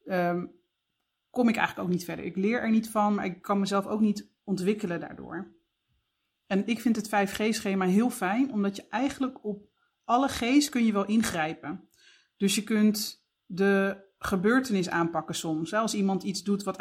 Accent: Dutch